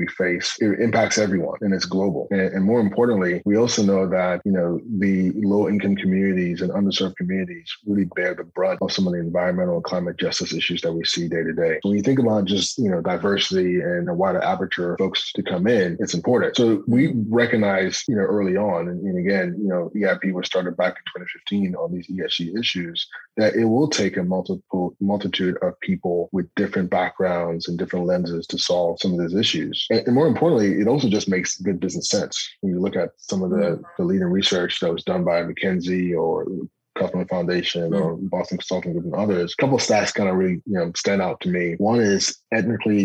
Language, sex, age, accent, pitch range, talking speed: English, male, 30-49, American, 90-110 Hz, 215 wpm